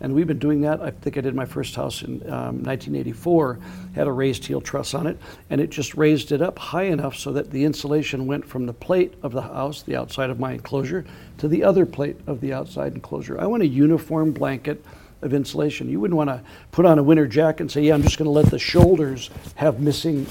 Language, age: English, 60-79